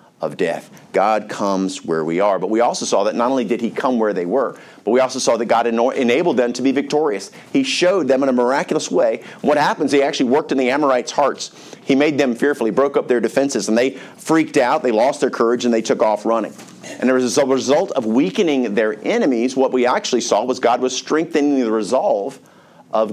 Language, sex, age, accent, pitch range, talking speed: English, male, 50-69, American, 115-145 Hz, 225 wpm